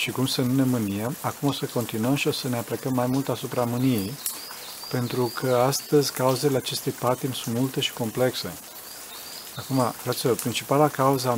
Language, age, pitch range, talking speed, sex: Romanian, 40-59, 115-135 Hz, 180 wpm, male